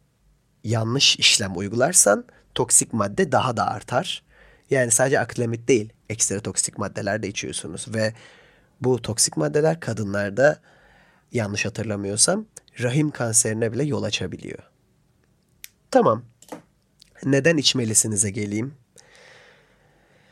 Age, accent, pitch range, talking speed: 30-49, native, 105-150 Hz, 95 wpm